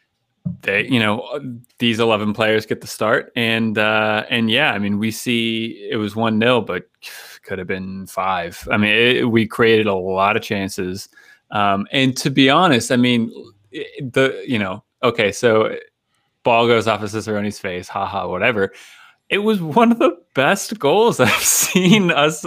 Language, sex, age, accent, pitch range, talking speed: English, male, 20-39, American, 100-130 Hz, 170 wpm